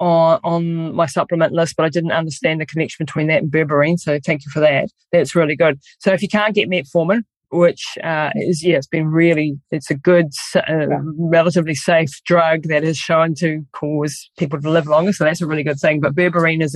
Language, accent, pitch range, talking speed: English, Australian, 160-215 Hz, 215 wpm